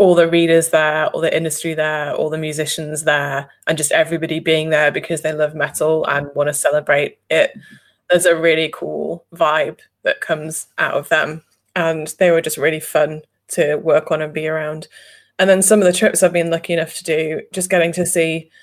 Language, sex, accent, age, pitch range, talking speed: English, female, British, 20-39, 155-170 Hz, 205 wpm